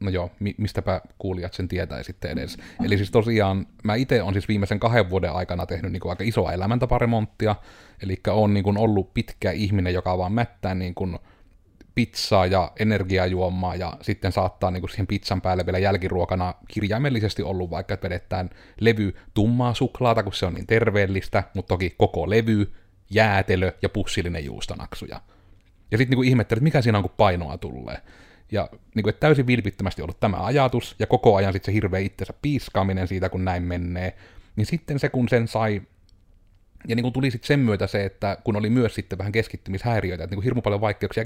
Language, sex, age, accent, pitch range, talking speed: Finnish, male, 30-49, native, 95-110 Hz, 185 wpm